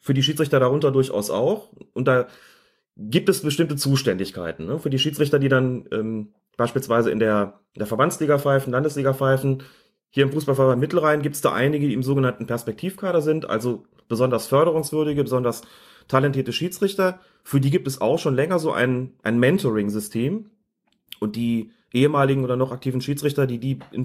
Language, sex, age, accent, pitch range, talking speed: German, male, 30-49, German, 125-160 Hz, 165 wpm